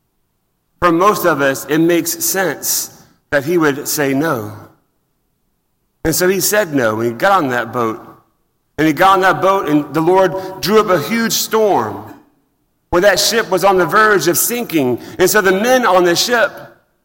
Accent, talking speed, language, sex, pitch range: American, 185 wpm, English, male, 135-185 Hz